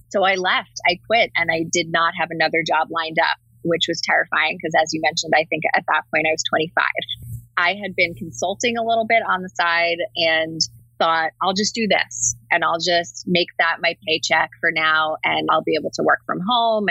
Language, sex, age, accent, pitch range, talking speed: English, female, 20-39, American, 160-175 Hz, 220 wpm